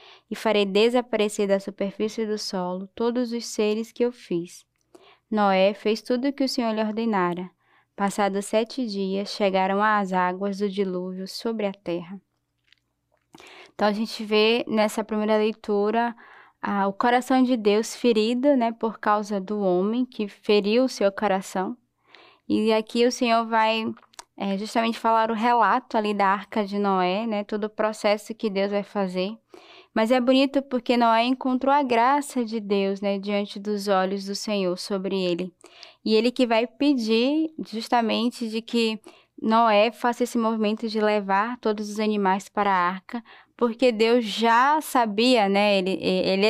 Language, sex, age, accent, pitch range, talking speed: Portuguese, female, 10-29, Brazilian, 200-235 Hz, 155 wpm